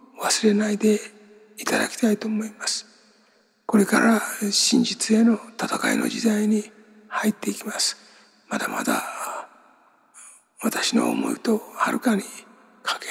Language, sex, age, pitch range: Japanese, male, 60-79, 220-250 Hz